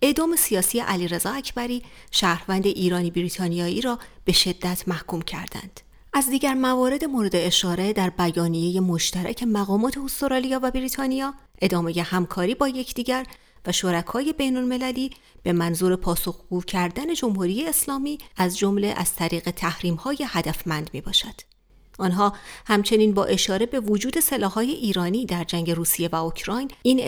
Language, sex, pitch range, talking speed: Persian, female, 175-245 Hz, 130 wpm